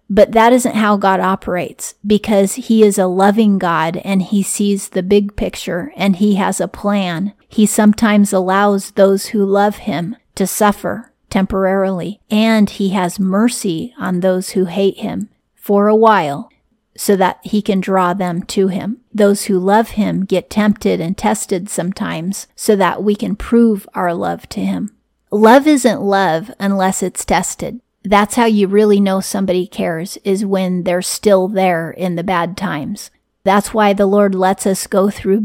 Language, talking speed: English, 170 wpm